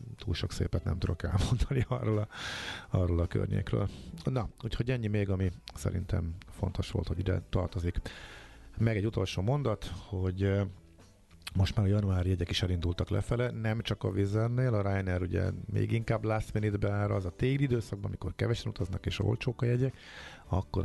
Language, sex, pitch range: Hungarian, male, 90-110 Hz